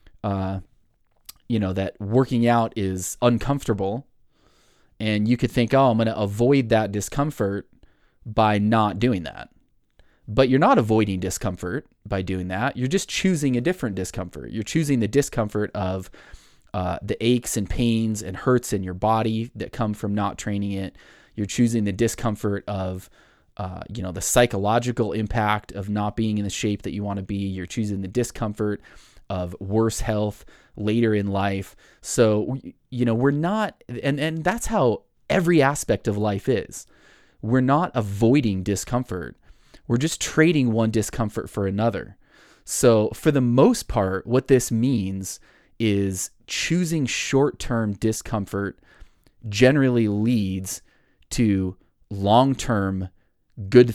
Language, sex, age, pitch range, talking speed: English, male, 20-39, 100-120 Hz, 150 wpm